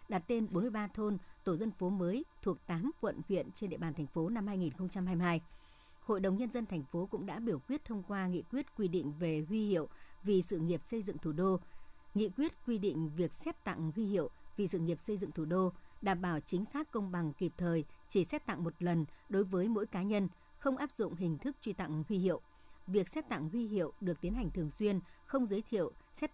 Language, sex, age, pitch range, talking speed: Vietnamese, male, 60-79, 170-215 Hz, 230 wpm